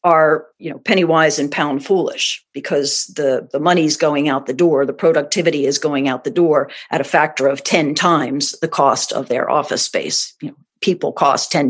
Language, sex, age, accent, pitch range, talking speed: English, female, 50-69, American, 150-205 Hz, 205 wpm